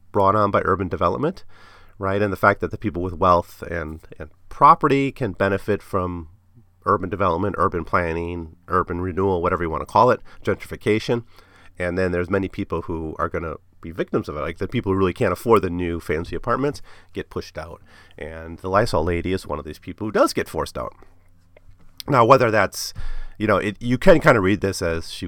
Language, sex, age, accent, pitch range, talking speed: English, male, 40-59, American, 85-105 Hz, 210 wpm